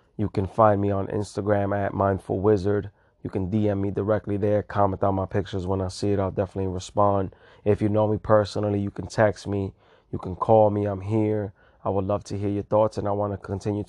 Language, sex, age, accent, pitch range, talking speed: English, male, 20-39, American, 95-105 Hz, 230 wpm